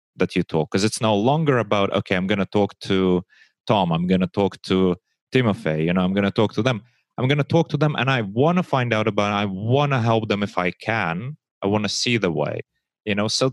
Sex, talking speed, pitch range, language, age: male, 260 wpm, 95-130 Hz, English, 30-49